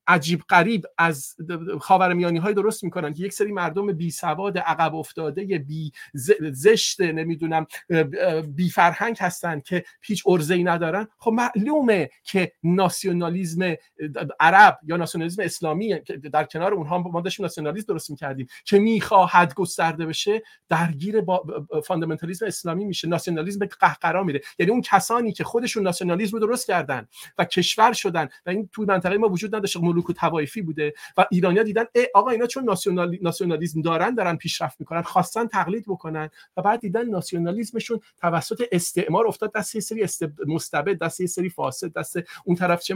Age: 50-69